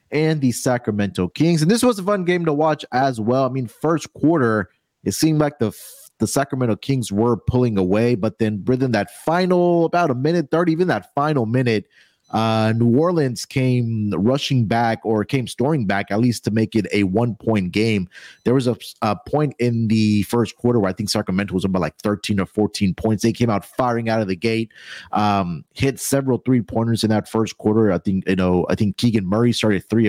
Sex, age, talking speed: male, 30-49, 210 wpm